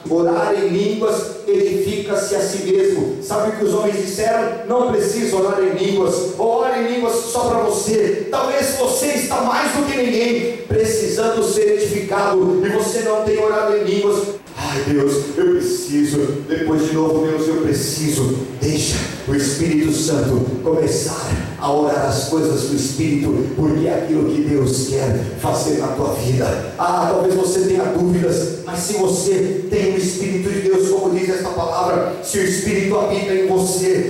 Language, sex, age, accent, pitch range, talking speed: Portuguese, male, 40-59, Brazilian, 185-255 Hz, 170 wpm